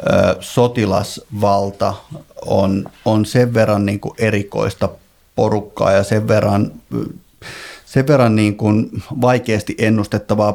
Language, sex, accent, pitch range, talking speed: Finnish, male, native, 100-120 Hz, 90 wpm